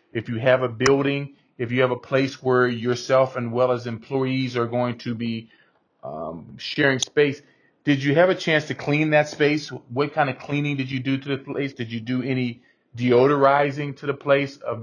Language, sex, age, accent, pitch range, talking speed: English, male, 40-59, American, 120-140 Hz, 205 wpm